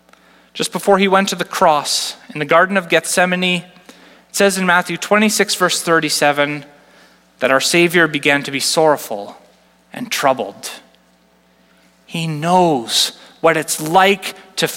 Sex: male